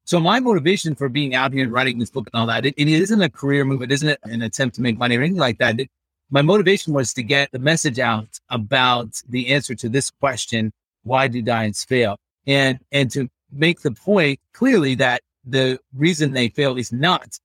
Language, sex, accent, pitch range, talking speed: English, male, American, 115-150 Hz, 220 wpm